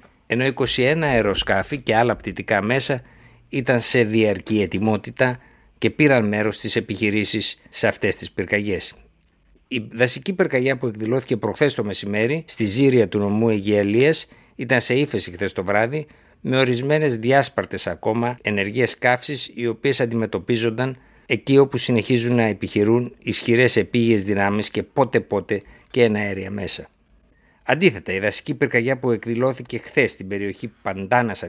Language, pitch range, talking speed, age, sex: Greek, 105-130 Hz, 135 wpm, 60-79, male